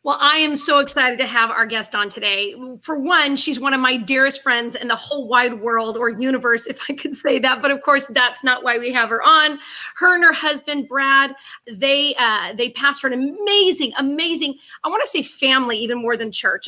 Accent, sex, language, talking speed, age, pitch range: American, female, English, 220 wpm, 30-49, 245-310 Hz